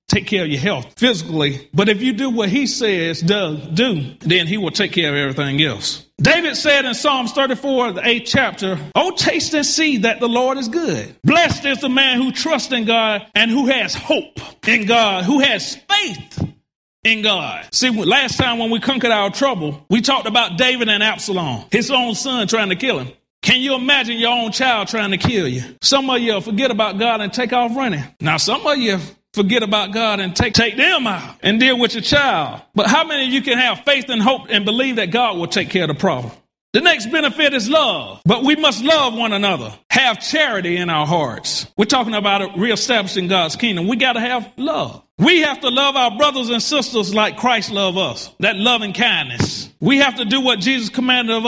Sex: male